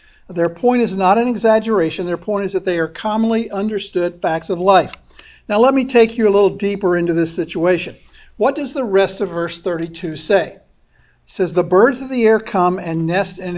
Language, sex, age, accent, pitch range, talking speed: English, male, 60-79, American, 180-220 Hz, 210 wpm